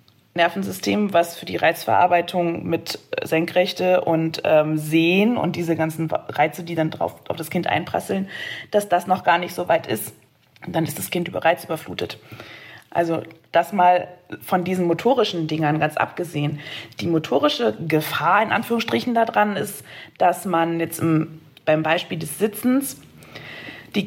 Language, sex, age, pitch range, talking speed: German, female, 20-39, 165-210 Hz, 150 wpm